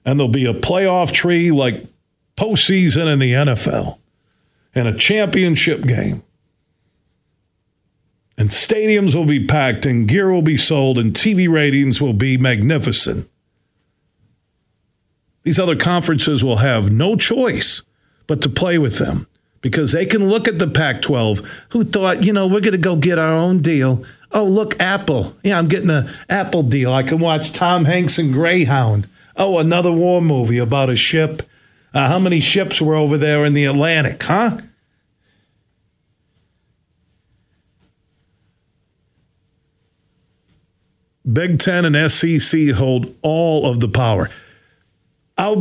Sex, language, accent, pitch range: male, English, American, 130-185 Hz